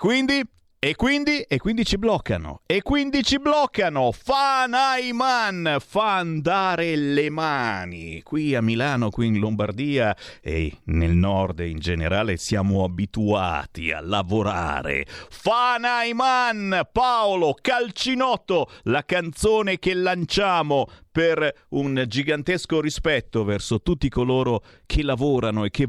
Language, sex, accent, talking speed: Italian, male, native, 115 wpm